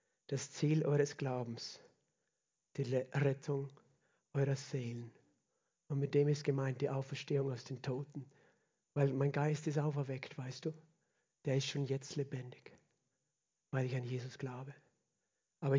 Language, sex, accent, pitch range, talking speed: German, male, German, 140-155 Hz, 135 wpm